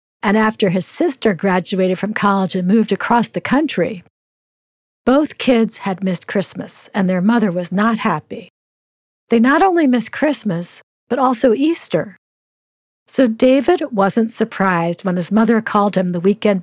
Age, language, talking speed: 50-69, English, 150 wpm